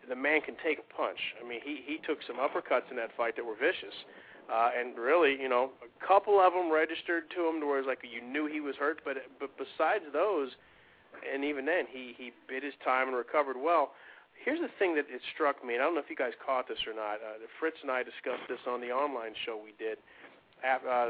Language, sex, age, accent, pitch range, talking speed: English, male, 40-59, American, 120-160 Hz, 250 wpm